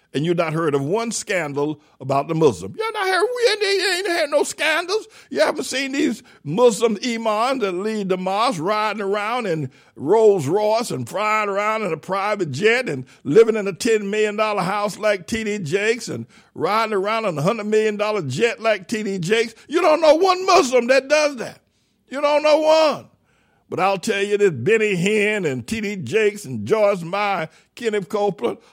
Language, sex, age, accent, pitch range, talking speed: English, male, 60-79, American, 190-250 Hz, 185 wpm